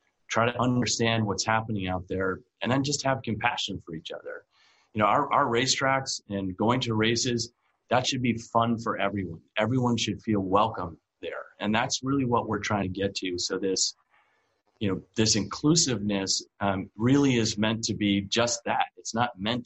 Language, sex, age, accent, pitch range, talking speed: English, male, 30-49, American, 100-125 Hz, 185 wpm